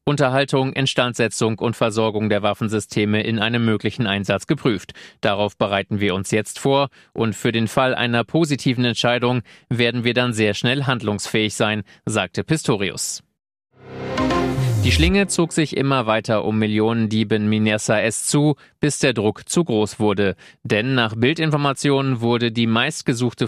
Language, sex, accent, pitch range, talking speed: German, male, German, 105-130 Hz, 145 wpm